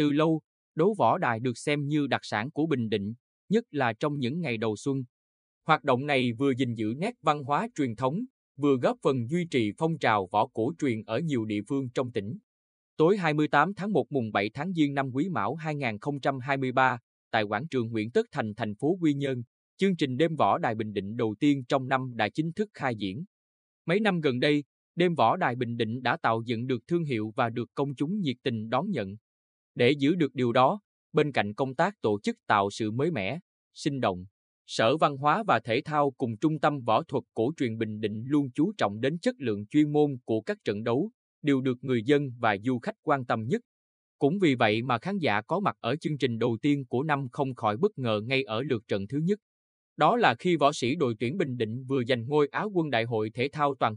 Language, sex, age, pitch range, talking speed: Vietnamese, male, 20-39, 110-150 Hz, 230 wpm